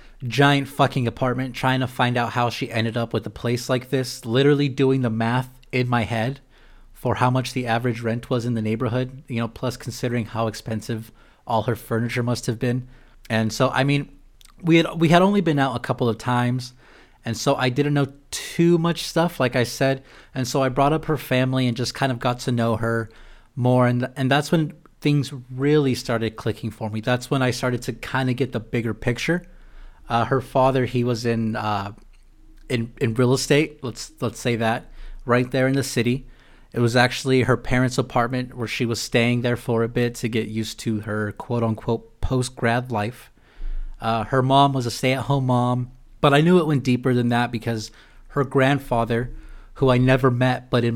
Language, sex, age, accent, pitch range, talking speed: English, male, 30-49, American, 115-130 Hz, 210 wpm